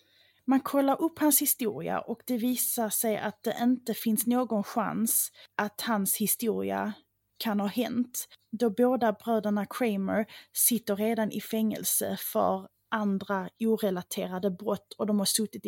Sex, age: female, 30-49